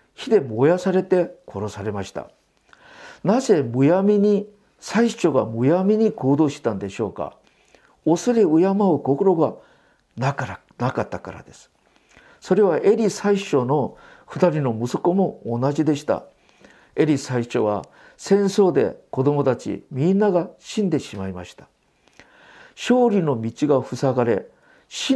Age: 50-69